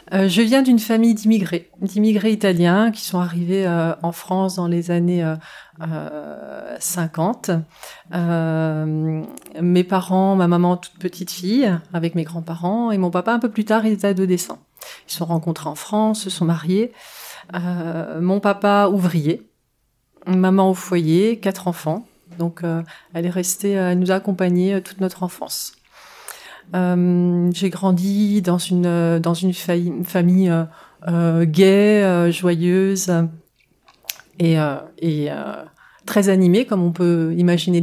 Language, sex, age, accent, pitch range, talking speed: French, female, 40-59, French, 170-195 Hz, 150 wpm